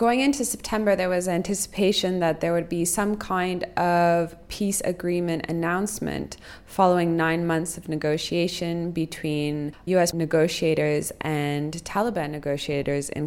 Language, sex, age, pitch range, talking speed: English, female, 20-39, 150-180 Hz, 125 wpm